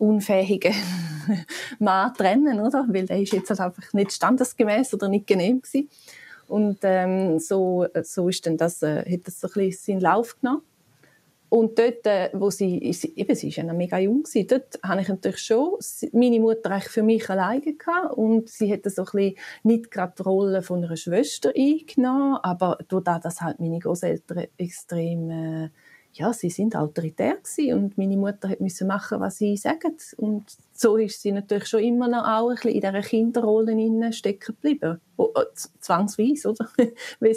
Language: German